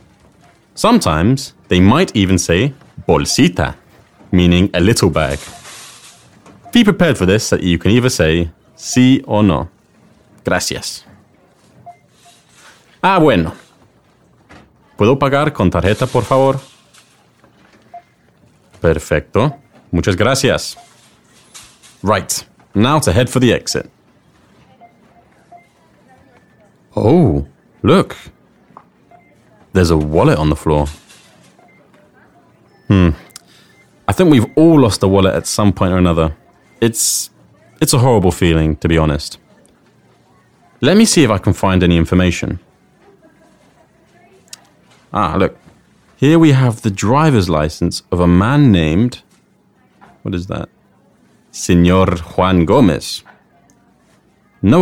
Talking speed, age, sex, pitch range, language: 110 wpm, 30-49, male, 85-130 Hz, English